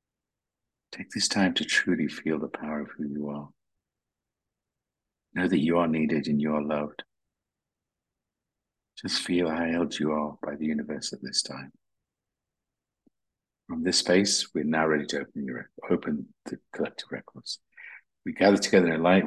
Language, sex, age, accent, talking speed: English, male, 50-69, British, 160 wpm